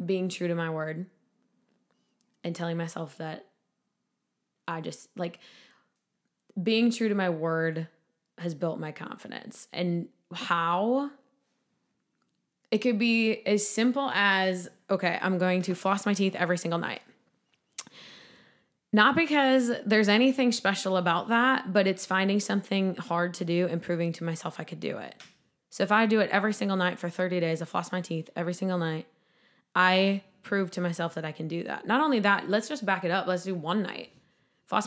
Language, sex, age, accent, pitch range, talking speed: English, female, 20-39, American, 170-205 Hz, 175 wpm